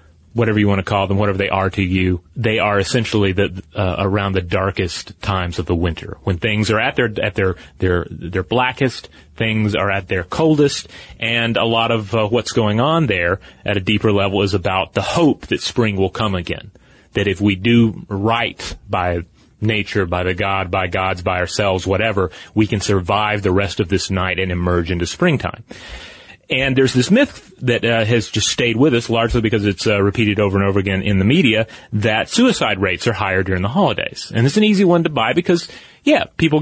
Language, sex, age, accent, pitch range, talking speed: English, male, 30-49, American, 95-115 Hz, 210 wpm